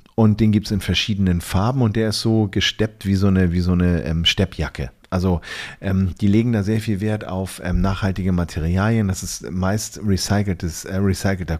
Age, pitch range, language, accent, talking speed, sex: 40-59, 90-110 Hz, German, German, 195 wpm, male